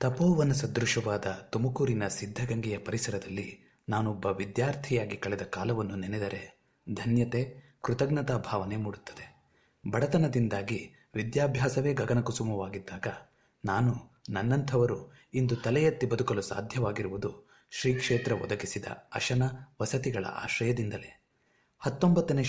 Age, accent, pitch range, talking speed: 30-49, native, 105-135 Hz, 80 wpm